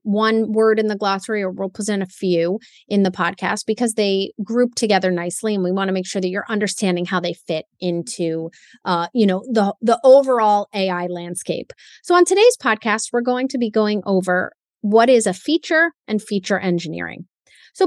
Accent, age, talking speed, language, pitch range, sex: American, 30-49, 190 wpm, English, 185-240 Hz, female